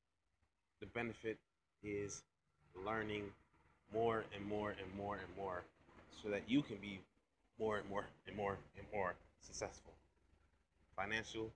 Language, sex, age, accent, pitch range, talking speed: English, male, 20-39, American, 80-110 Hz, 130 wpm